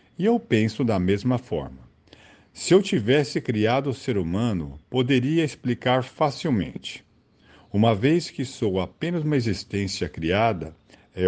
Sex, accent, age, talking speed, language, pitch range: male, Brazilian, 50-69, 135 wpm, Portuguese, 100-130 Hz